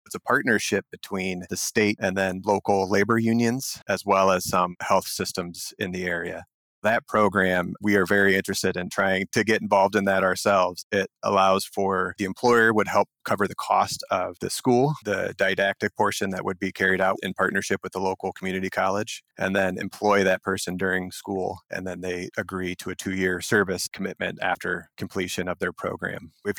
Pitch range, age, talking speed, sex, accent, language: 95-105 Hz, 30-49, 190 wpm, male, American, English